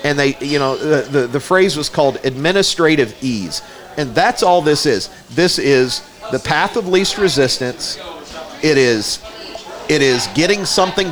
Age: 40-59